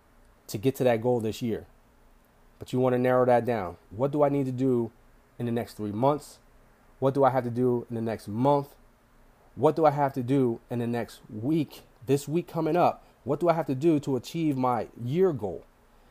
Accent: American